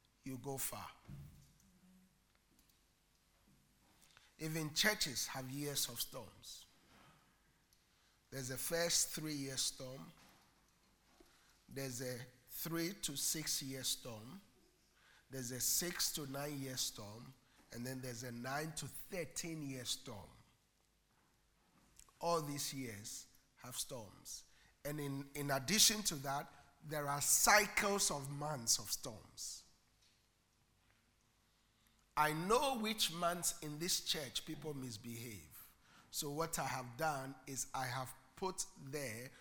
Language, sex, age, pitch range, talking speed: English, male, 50-69, 125-160 Hz, 115 wpm